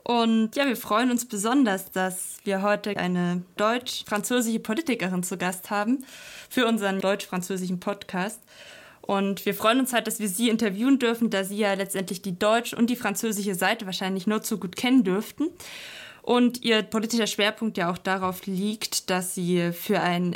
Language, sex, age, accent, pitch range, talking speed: German, female, 20-39, German, 185-220 Hz, 170 wpm